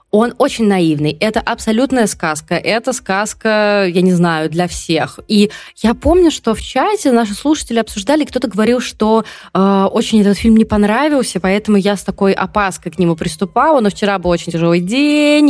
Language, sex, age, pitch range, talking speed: Russian, female, 20-39, 170-225 Hz, 175 wpm